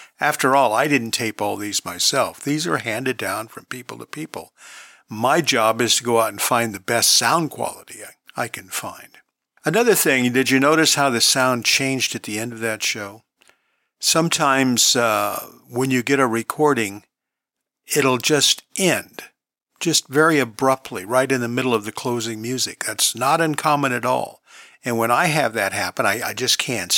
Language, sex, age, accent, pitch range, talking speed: English, male, 50-69, American, 115-140 Hz, 185 wpm